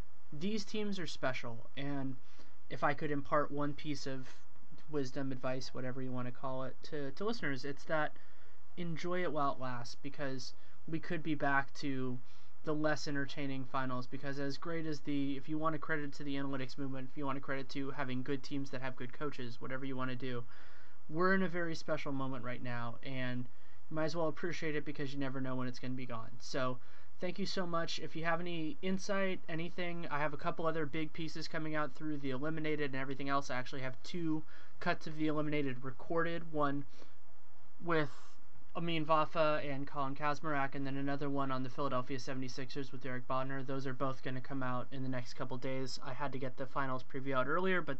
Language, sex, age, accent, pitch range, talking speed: English, male, 20-39, American, 130-155 Hz, 215 wpm